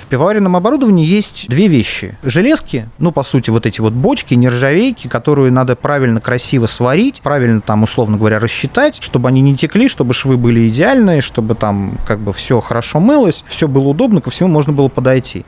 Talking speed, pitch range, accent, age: 185 wpm, 115-155 Hz, native, 30-49